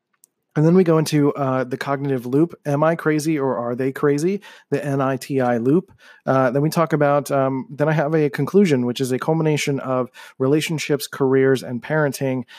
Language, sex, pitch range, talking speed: English, male, 125-145 Hz, 185 wpm